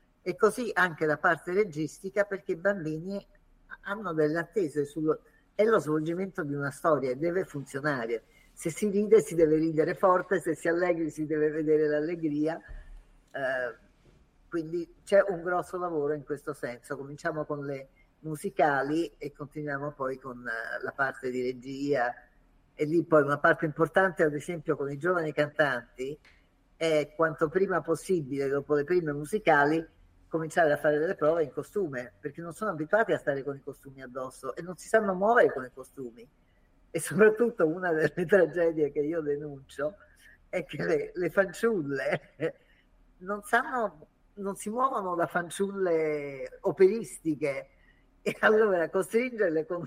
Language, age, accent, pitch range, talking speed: Italian, 50-69, native, 145-190 Hz, 150 wpm